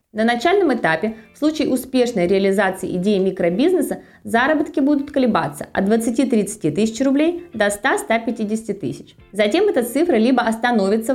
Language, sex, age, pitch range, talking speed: Russian, female, 20-39, 175-255 Hz, 130 wpm